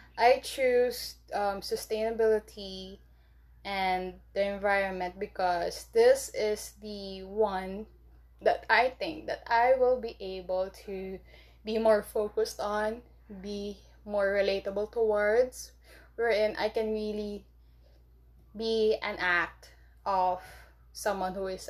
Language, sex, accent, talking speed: English, female, Filipino, 110 wpm